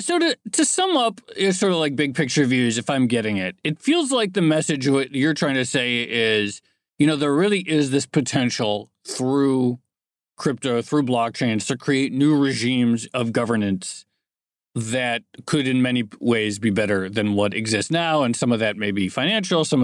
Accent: American